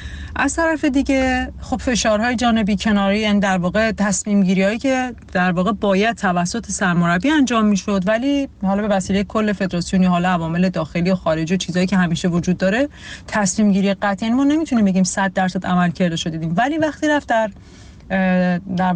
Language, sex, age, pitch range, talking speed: Persian, female, 30-49, 185-225 Hz, 170 wpm